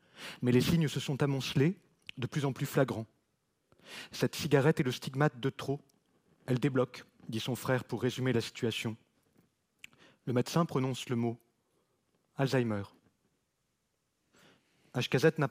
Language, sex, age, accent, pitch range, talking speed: French, male, 30-49, French, 120-145 Hz, 135 wpm